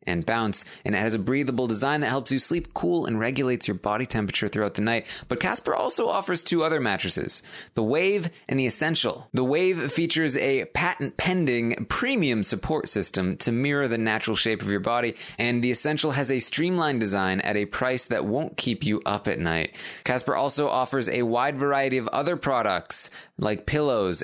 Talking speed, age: 190 wpm, 20-39